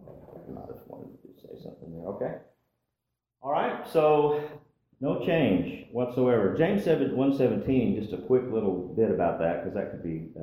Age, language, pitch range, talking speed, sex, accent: 40-59, English, 80-110 Hz, 160 wpm, male, American